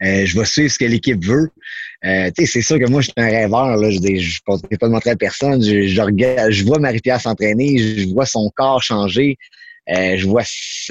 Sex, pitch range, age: male, 105-130 Hz, 30-49